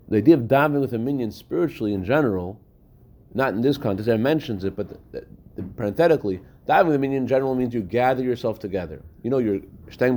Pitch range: 110-140 Hz